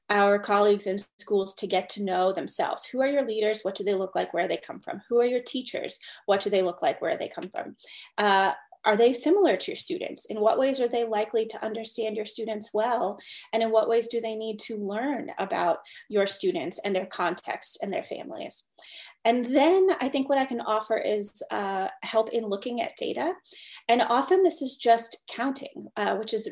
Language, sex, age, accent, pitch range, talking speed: English, female, 30-49, American, 205-255 Hz, 220 wpm